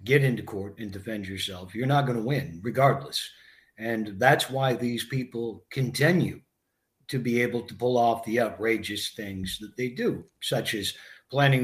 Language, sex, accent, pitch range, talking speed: English, male, American, 115-150 Hz, 165 wpm